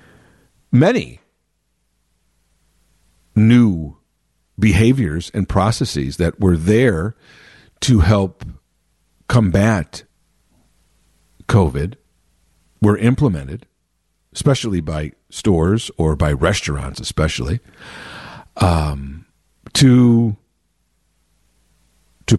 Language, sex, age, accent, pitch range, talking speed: English, male, 50-69, American, 80-125 Hz, 65 wpm